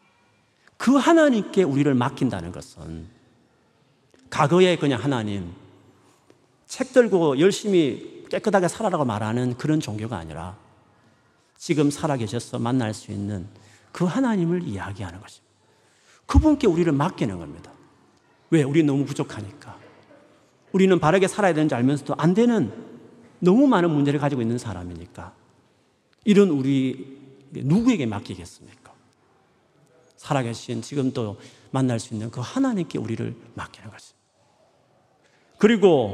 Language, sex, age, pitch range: Korean, male, 40-59, 115-175 Hz